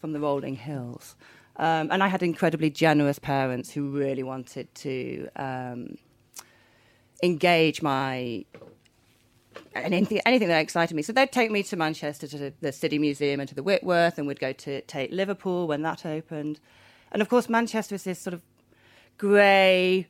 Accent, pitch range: British, 145-200 Hz